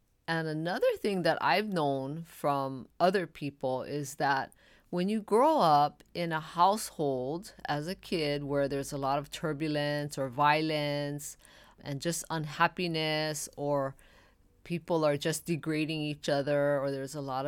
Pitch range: 140-165 Hz